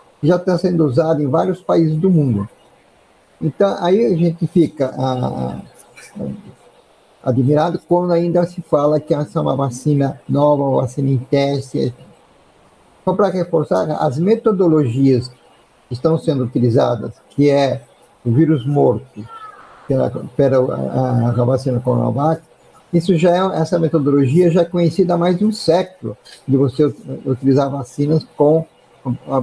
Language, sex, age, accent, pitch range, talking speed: Portuguese, male, 50-69, Brazilian, 135-175 Hz, 140 wpm